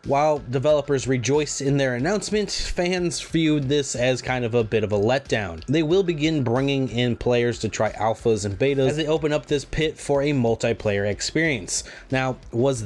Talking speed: 185 wpm